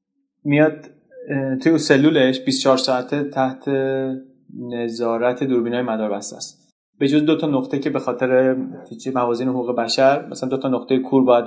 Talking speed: 150 wpm